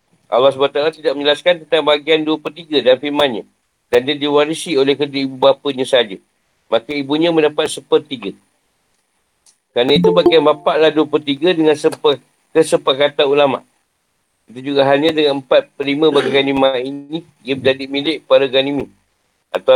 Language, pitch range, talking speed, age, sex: Malay, 135-160 Hz, 150 wpm, 50-69, male